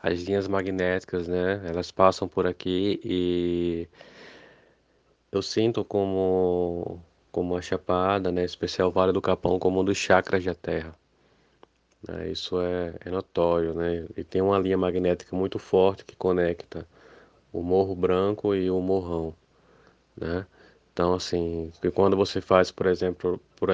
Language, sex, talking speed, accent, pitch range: Portuguese, male, 145 wpm, Brazilian, 90-95 Hz